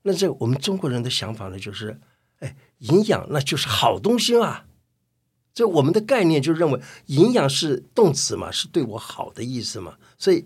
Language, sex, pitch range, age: Chinese, male, 115-170 Hz, 60-79